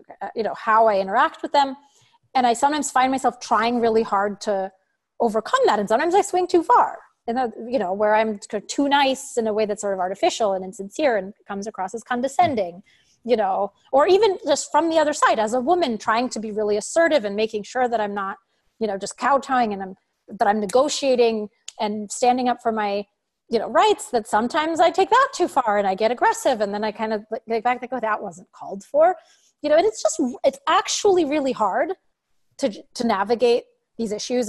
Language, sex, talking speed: English, female, 215 wpm